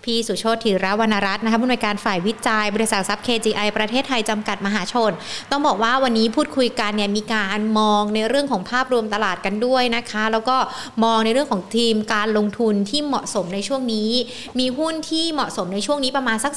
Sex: female